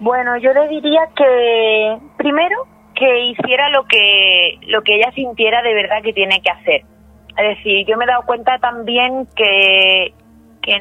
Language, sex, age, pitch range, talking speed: Spanish, female, 30-49, 190-245 Hz, 165 wpm